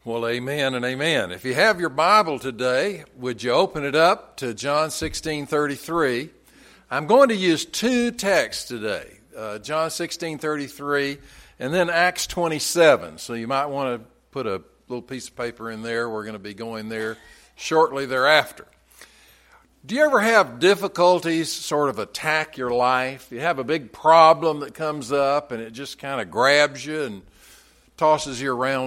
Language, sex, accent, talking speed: English, male, American, 180 wpm